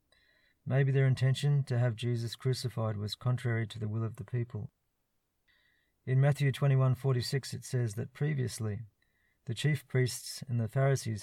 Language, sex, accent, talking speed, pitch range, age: English, male, Australian, 150 wpm, 115-130 Hz, 40-59